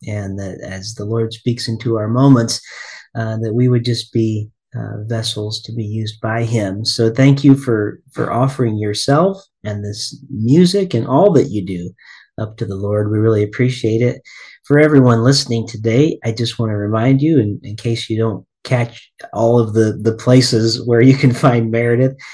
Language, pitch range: English, 105-125 Hz